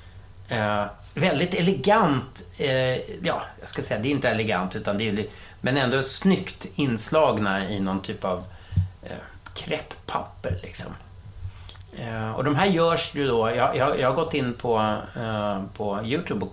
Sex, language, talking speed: male, English, 155 wpm